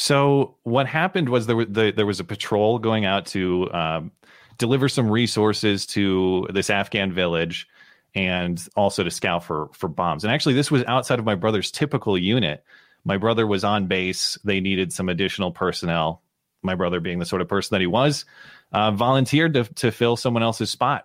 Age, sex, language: 30-49, male, English